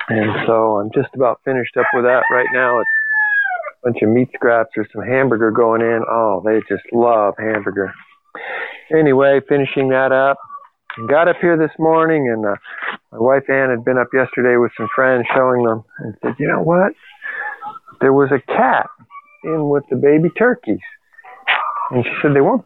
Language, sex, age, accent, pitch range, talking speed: English, male, 50-69, American, 115-155 Hz, 185 wpm